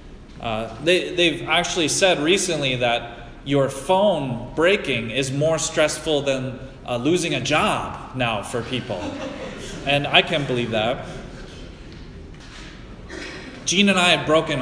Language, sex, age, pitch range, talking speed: English, male, 30-49, 120-160 Hz, 125 wpm